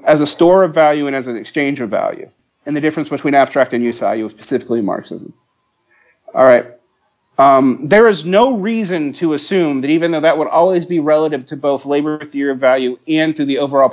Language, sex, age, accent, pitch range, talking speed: English, male, 40-59, American, 135-170 Hz, 210 wpm